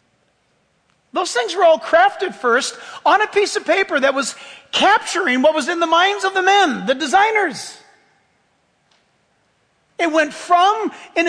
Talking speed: 150 wpm